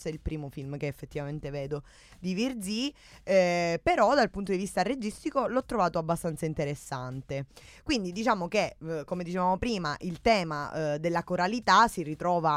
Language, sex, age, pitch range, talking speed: Italian, female, 20-39, 155-200 Hz, 160 wpm